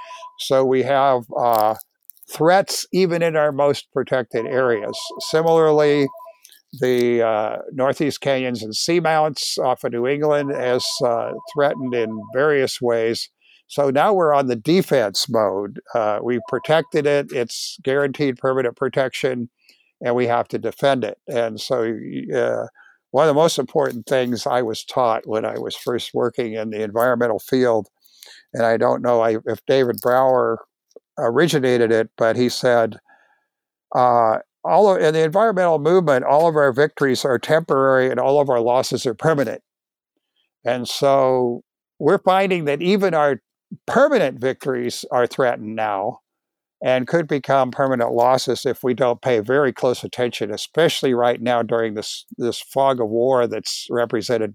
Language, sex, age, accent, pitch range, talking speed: English, male, 60-79, American, 120-145 Hz, 150 wpm